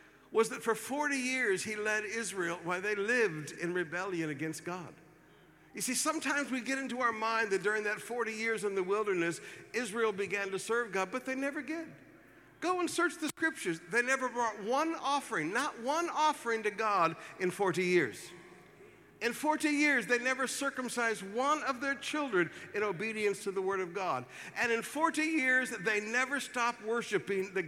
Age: 60-79